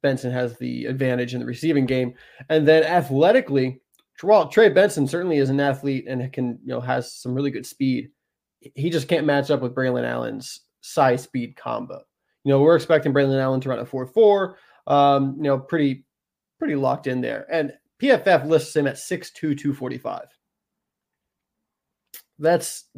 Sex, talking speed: male, 170 wpm